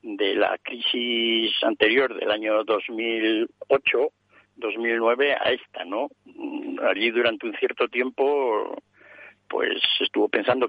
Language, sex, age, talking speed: Spanish, male, 60-79, 100 wpm